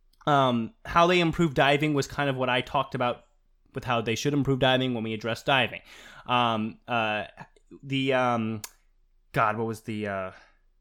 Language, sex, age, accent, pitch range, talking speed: English, male, 20-39, American, 115-160 Hz, 170 wpm